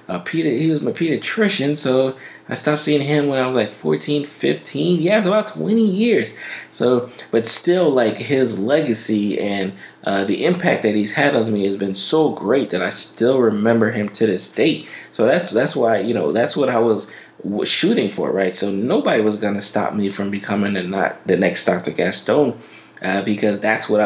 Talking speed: 205 wpm